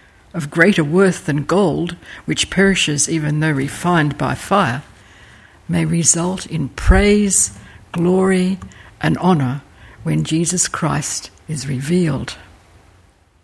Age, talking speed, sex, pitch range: 60-79, 105 wpm, female, 130-200 Hz